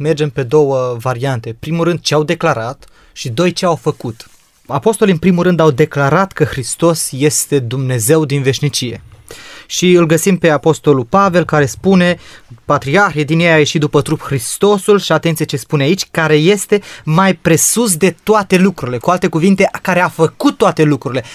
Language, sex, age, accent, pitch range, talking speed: Romanian, male, 20-39, native, 145-185 Hz, 175 wpm